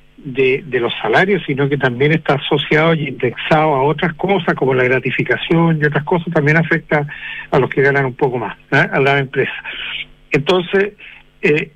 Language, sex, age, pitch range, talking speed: Spanish, male, 60-79, 140-170 Hz, 180 wpm